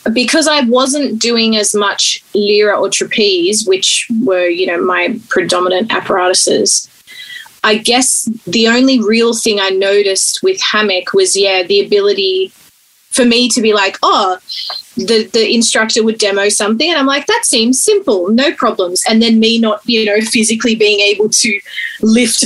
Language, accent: English, Australian